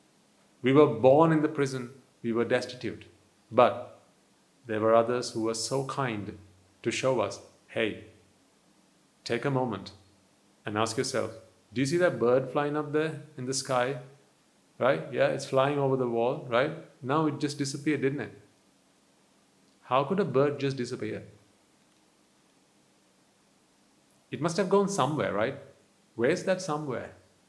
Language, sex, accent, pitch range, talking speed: English, male, Indian, 110-145 Hz, 150 wpm